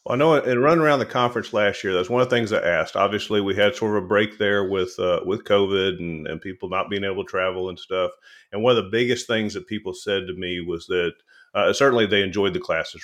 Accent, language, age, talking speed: American, English, 40-59, 265 wpm